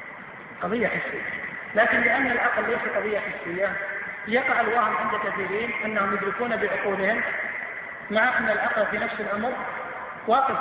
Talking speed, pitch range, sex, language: 125 wpm, 200-235 Hz, male, Arabic